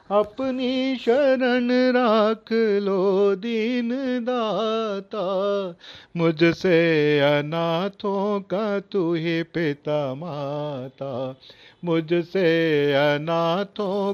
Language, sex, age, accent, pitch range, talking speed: Hindi, male, 40-59, native, 145-205 Hz, 65 wpm